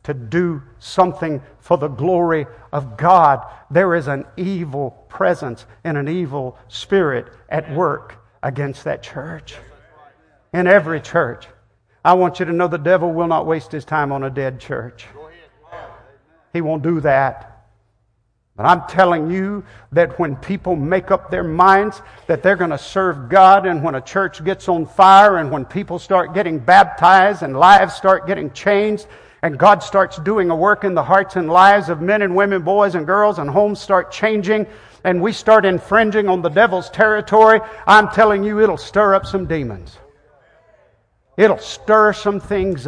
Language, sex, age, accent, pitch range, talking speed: English, male, 60-79, American, 155-210 Hz, 170 wpm